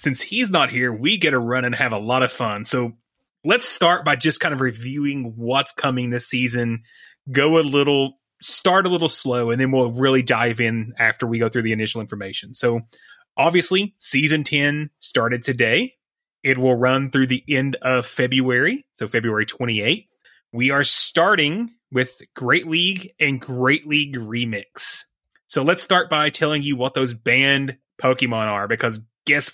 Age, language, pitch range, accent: 30-49, English, 120-165 Hz, American